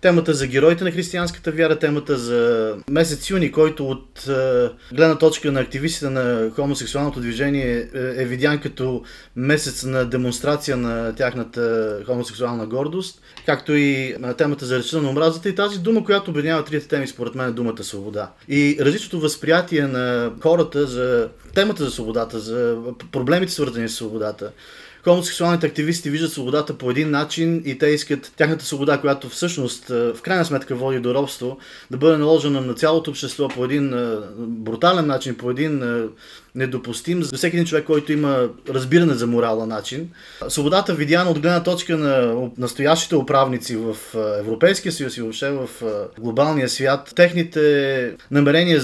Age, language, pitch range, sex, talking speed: 30-49, Bulgarian, 125-155 Hz, male, 150 wpm